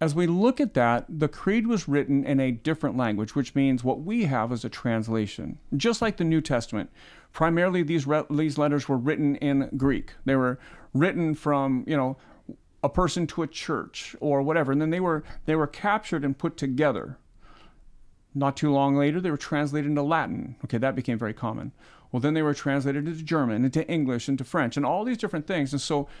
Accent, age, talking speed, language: American, 40-59, 205 wpm, English